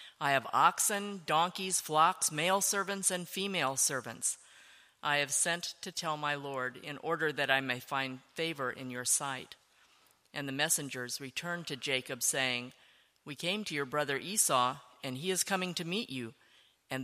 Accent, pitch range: American, 135-170 Hz